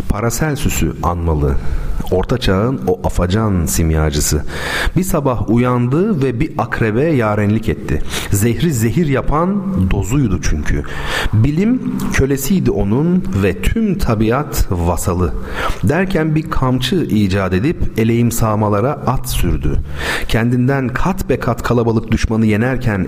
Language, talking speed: Turkish, 110 wpm